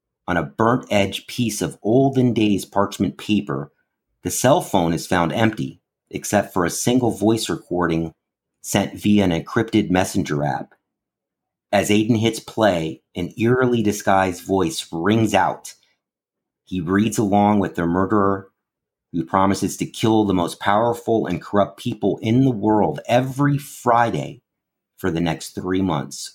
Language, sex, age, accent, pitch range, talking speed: English, male, 40-59, American, 90-110 Hz, 145 wpm